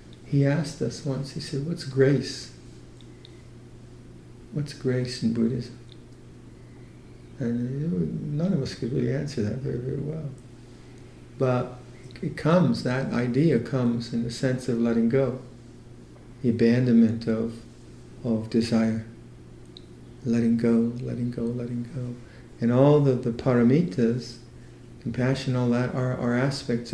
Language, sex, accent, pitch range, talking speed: English, male, American, 115-130 Hz, 125 wpm